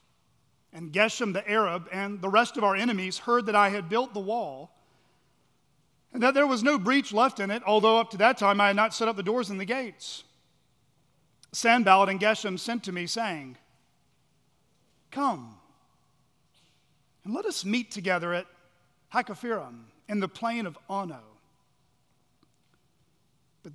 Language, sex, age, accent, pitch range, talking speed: English, male, 40-59, American, 185-245 Hz, 155 wpm